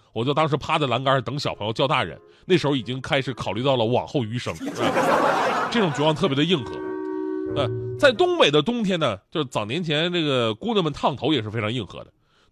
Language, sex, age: Chinese, male, 30-49